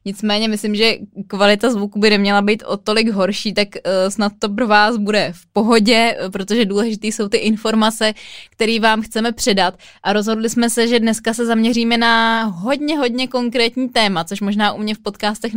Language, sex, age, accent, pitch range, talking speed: Czech, female, 20-39, native, 200-225 Hz, 180 wpm